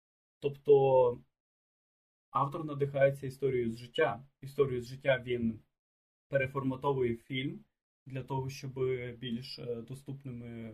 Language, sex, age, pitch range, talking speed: Ukrainian, male, 20-39, 125-140 Hz, 95 wpm